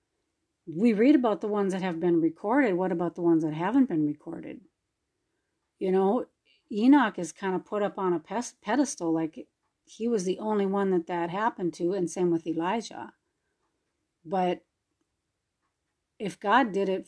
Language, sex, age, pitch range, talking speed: English, female, 40-59, 180-240 Hz, 165 wpm